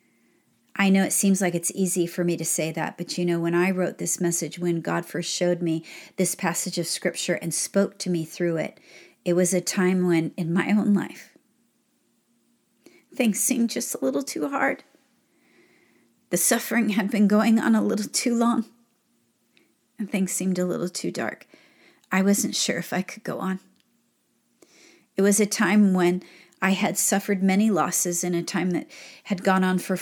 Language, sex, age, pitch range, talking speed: English, female, 40-59, 175-210 Hz, 190 wpm